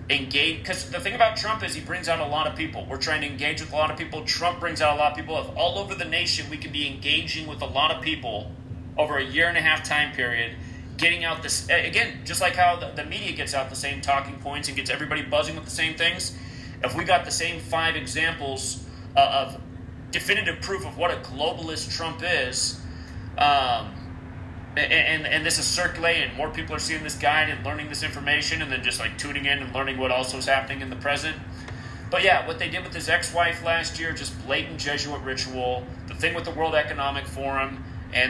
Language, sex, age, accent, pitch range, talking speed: English, male, 30-49, American, 120-150 Hz, 225 wpm